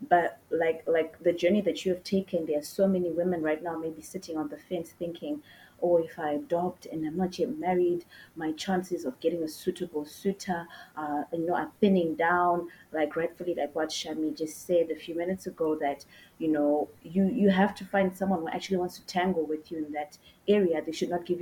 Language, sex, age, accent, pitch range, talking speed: English, female, 30-49, South African, 155-185 Hz, 220 wpm